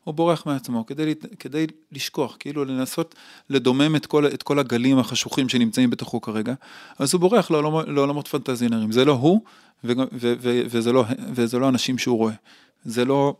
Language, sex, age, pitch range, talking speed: Hebrew, male, 20-39, 115-140 Hz, 175 wpm